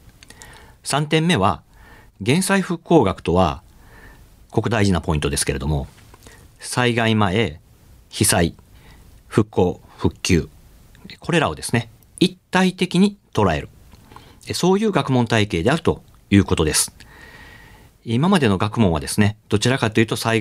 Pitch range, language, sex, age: 90-130 Hz, Japanese, male, 50-69